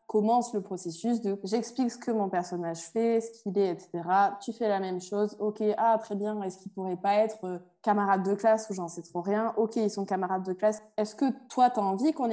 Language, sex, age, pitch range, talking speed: French, female, 20-39, 195-235 Hz, 250 wpm